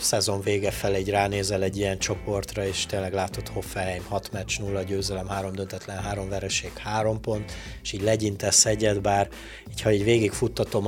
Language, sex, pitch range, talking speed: Hungarian, male, 95-105 Hz, 175 wpm